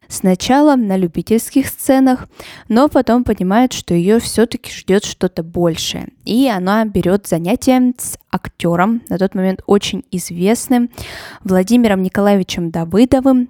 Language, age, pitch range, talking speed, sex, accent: Russian, 20-39, 185-240 Hz, 120 wpm, female, native